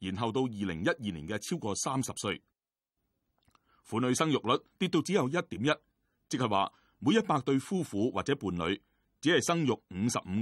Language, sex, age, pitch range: Chinese, male, 30-49, 105-160 Hz